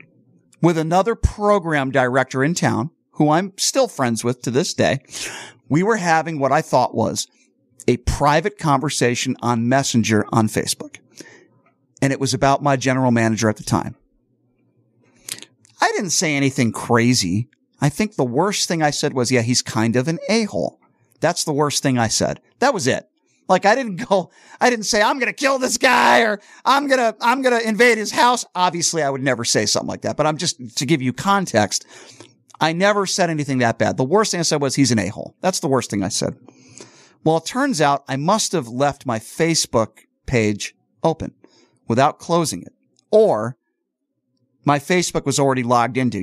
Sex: male